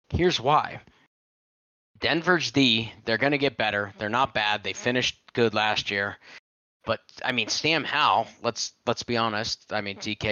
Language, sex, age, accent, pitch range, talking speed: English, male, 30-49, American, 110-140 Hz, 170 wpm